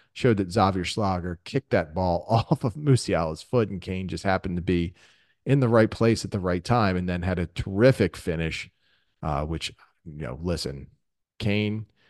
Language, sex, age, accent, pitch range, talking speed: English, male, 40-59, American, 85-110 Hz, 185 wpm